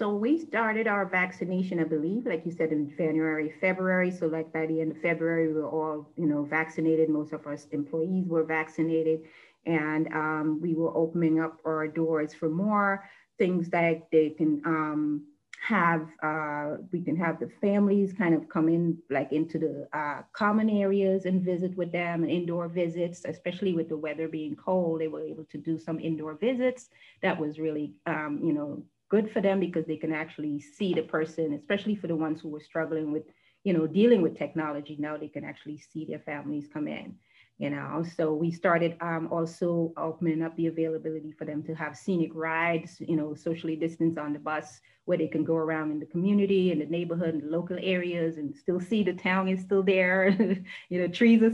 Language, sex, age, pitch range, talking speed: English, female, 30-49, 155-185 Hz, 200 wpm